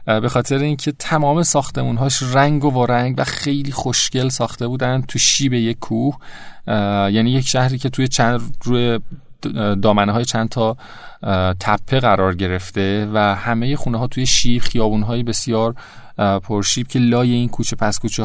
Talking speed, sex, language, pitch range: 150 wpm, male, Persian, 105-135 Hz